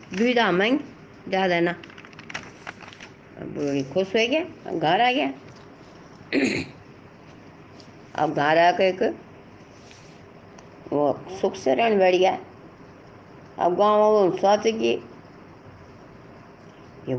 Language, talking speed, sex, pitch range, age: Hindi, 75 wpm, female, 145-200 Hz, 60-79